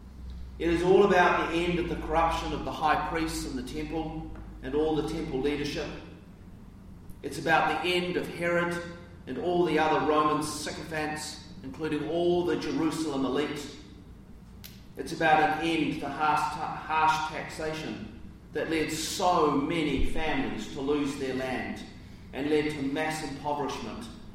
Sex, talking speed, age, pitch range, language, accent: male, 150 wpm, 40-59, 110-155 Hz, English, Australian